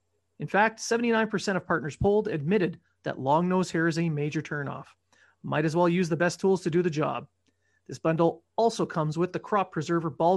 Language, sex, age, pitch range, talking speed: English, male, 30-49, 155-200 Hz, 195 wpm